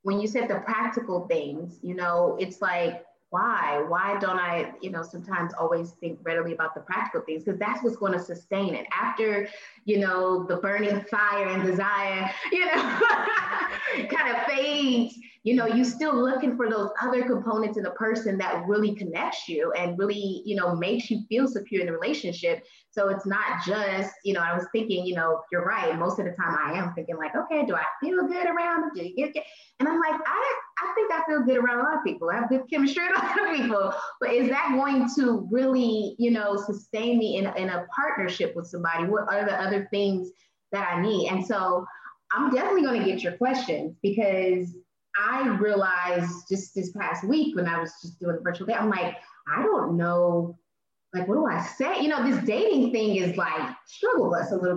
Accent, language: American, English